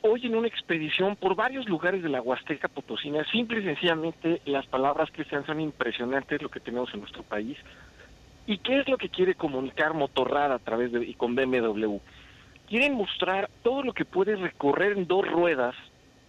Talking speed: 185 wpm